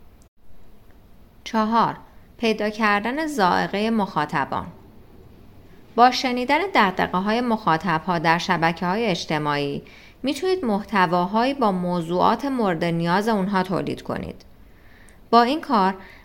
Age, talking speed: 30-49, 100 wpm